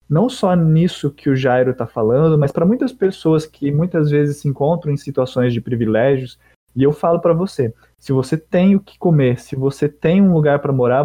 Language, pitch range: Portuguese, 130-165 Hz